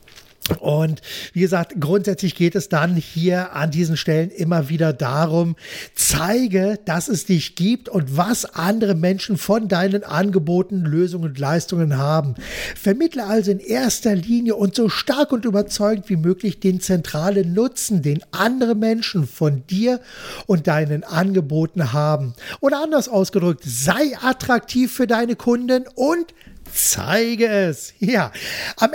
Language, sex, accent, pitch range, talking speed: German, male, German, 160-205 Hz, 140 wpm